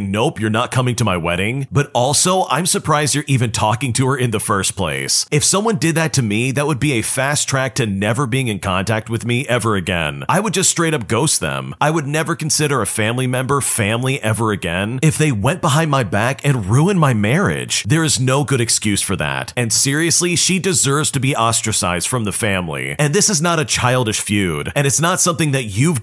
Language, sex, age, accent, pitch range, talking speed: English, male, 40-59, American, 110-150 Hz, 225 wpm